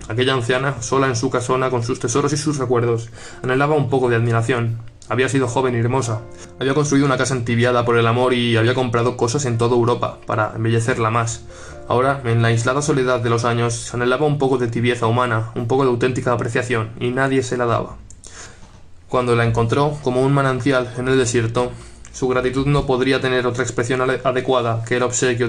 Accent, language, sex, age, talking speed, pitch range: Spanish, Spanish, male, 20-39, 200 wpm, 115-130 Hz